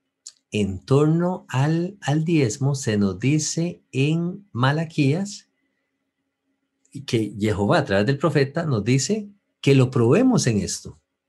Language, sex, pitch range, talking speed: English, male, 105-150 Hz, 120 wpm